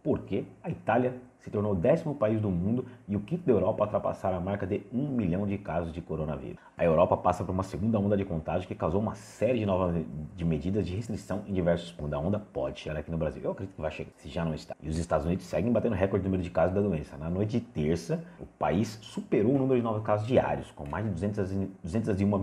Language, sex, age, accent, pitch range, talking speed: Portuguese, male, 30-49, Brazilian, 80-100 Hz, 255 wpm